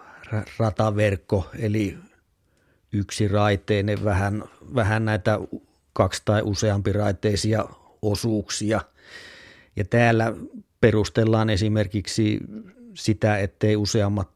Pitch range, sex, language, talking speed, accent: 100-115 Hz, male, Finnish, 75 wpm, native